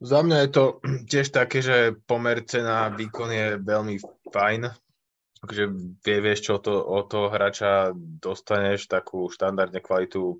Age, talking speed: 20-39, 145 wpm